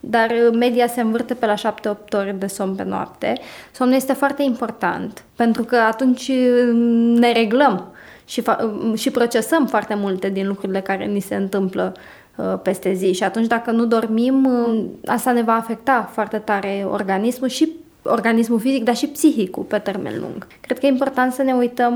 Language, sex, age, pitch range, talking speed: Romanian, female, 20-39, 210-245 Hz, 180 wpm